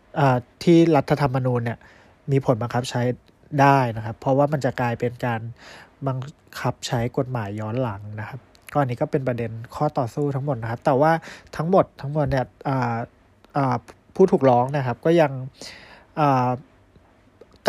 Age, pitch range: 20-39, 120-155 Hz